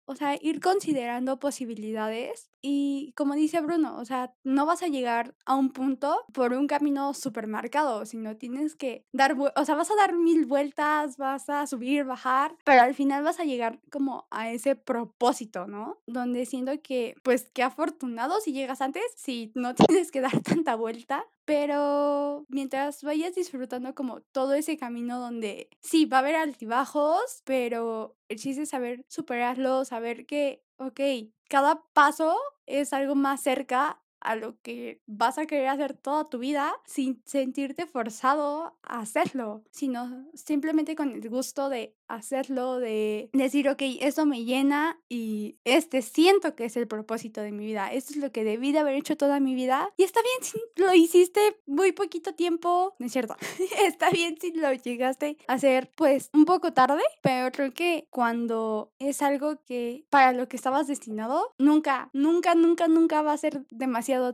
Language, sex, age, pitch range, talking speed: Spanish, female, 10-29, 250-305 Hz, 175 wpm